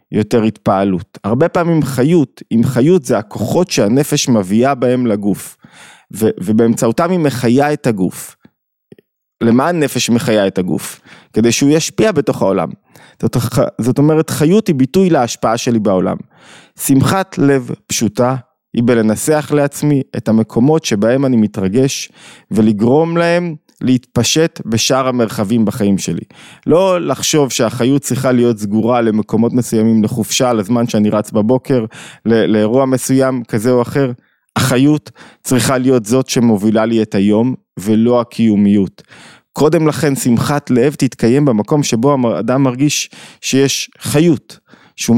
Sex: male